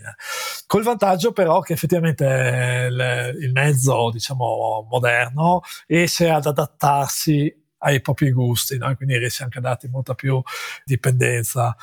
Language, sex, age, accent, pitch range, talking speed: Italian, male, 40-59, native, 130-165 Hz, 130 wpm